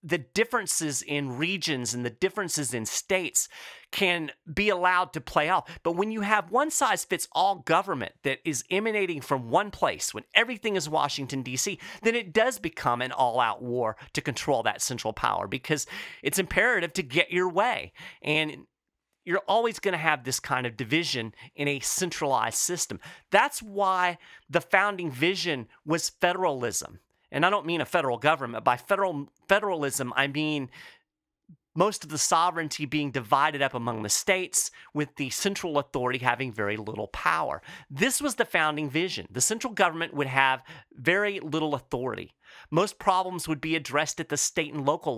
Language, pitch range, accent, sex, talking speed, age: English, 135-185 Hz, American, male, 165 wpm, 40-59